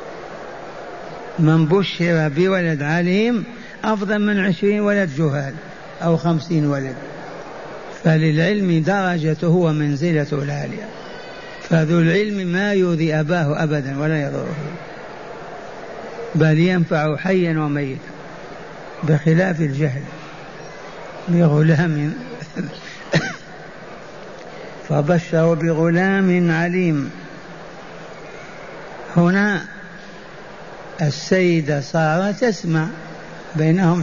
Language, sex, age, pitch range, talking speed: Arabic, male, 60-79, 160-190 Hz, 70 wpm